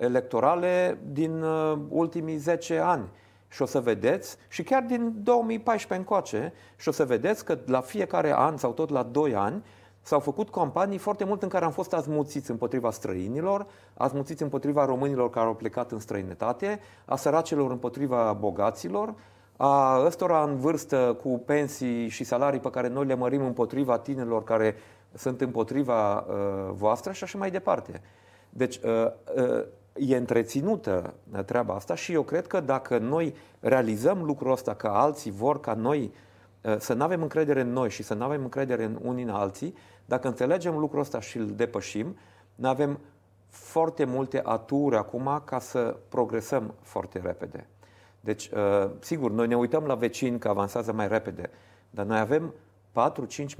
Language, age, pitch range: Romanian, 30-49, 110-150 Hz